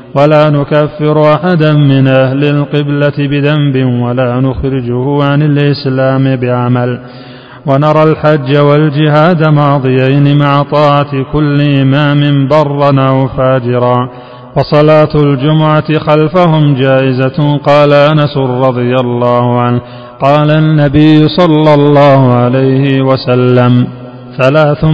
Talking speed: 95 wpm